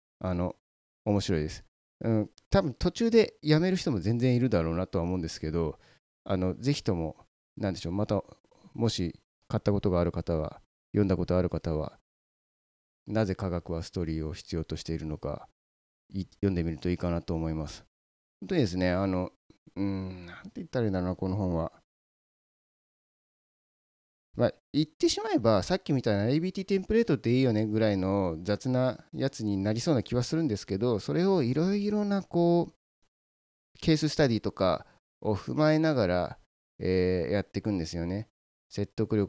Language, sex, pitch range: Japanese, male, 85-125 Hz